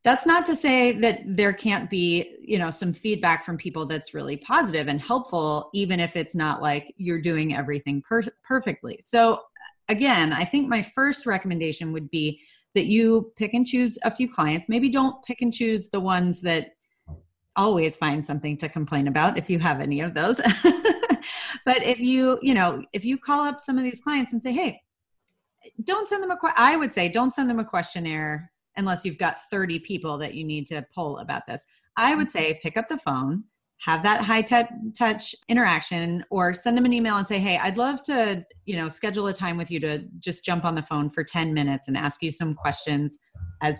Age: 30-49